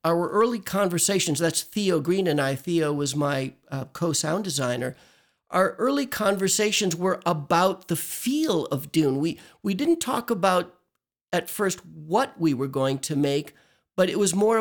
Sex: male